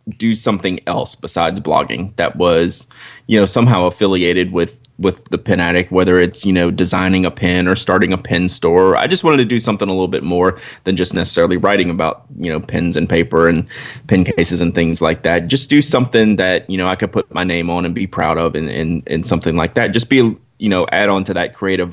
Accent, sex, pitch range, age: American, male, 85-105 Hz, 20-39